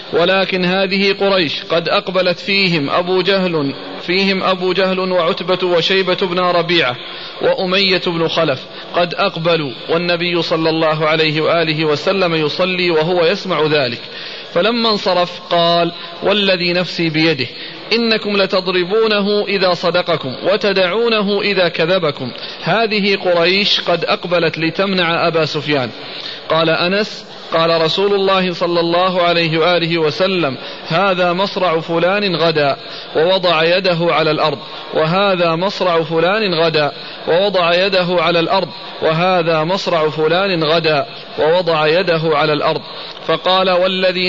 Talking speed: 115 wpm